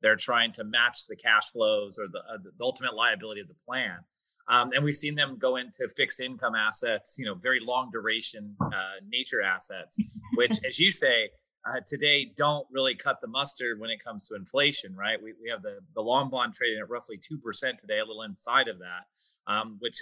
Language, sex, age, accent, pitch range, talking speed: English, male, 30-49, American, 120-170 Hz, 215 wpm